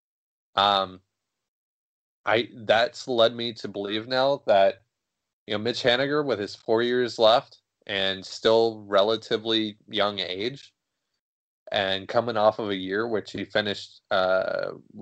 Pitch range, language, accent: 100-125 Hz, English, American